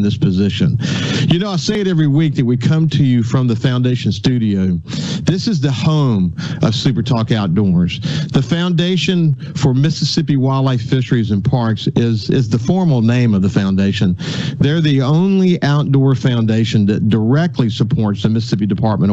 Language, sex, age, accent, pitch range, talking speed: English, male, 50-69, American, 110-145 Hz, 165 wpm